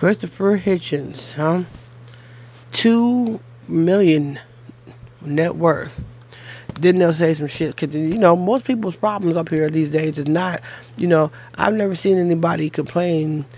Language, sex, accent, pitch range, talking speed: English, male, American, 145-185 Hz, 135 wpm